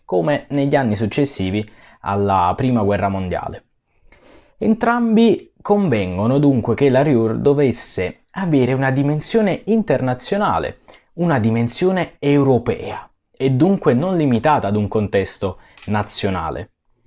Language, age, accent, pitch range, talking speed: Italian, 20-39, native, 100-140 Hz, 105 wpm